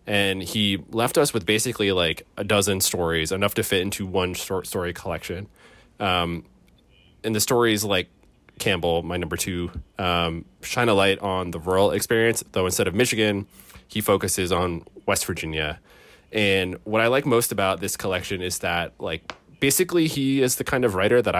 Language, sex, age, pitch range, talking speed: English, male, 20-39, 90-110 Hz, 175 wpm